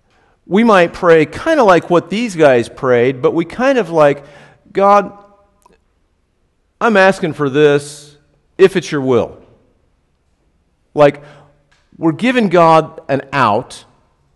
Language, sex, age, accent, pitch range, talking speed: English, male, 50-69, American, 135-205 Hz, 125 wpm